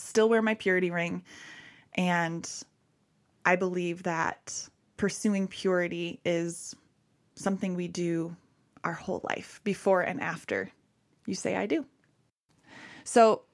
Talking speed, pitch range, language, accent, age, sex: 115 wpm, 170-200 Hz, English, American, 20-39, female